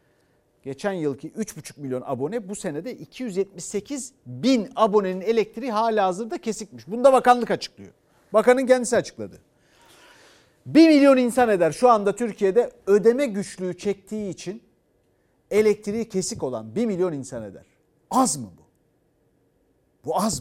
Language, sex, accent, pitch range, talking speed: Turkish, male, native, 170-245 Hz, 130 wpm